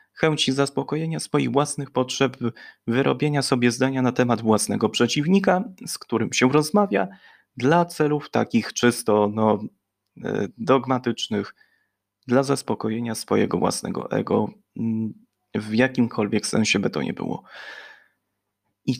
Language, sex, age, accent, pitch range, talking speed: Polish, male, 20-39, native, 110-140 Hz, 105 wpm